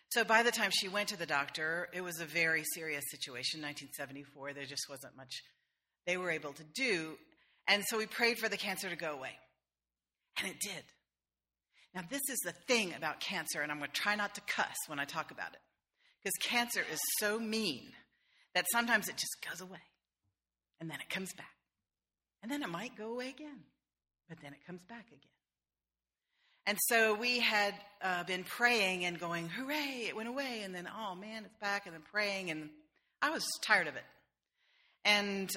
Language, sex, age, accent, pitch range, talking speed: English, female, 40-59, American, 150-215 Hz, 195 wpm